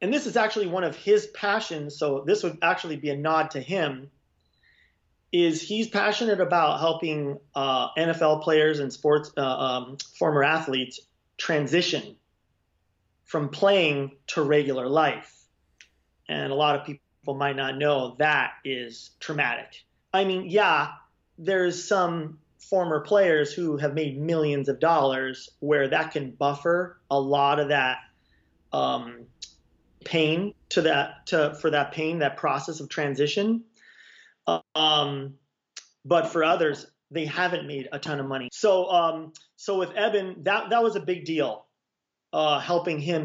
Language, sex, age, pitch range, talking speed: English, male, 30-49, 140-165 Hz, 145 wpm